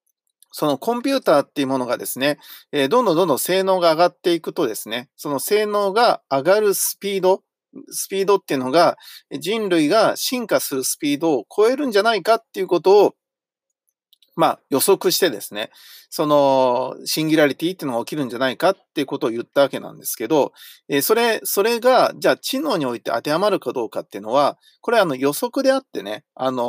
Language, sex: Japanese, male